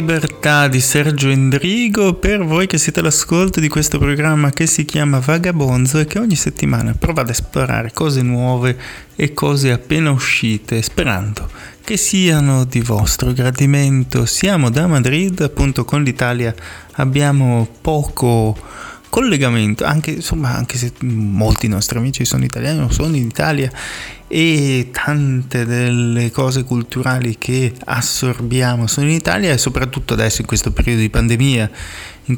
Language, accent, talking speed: Italian, native, 140 wpm